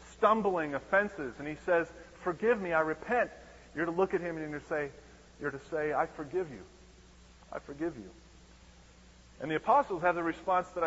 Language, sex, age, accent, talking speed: English, male, 30-49, American, 190 wpm